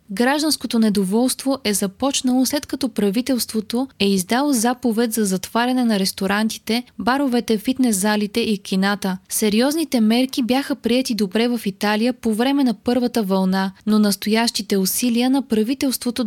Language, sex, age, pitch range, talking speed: Bulgarian, female, 20-39, 210-255 Hz, 130 wpm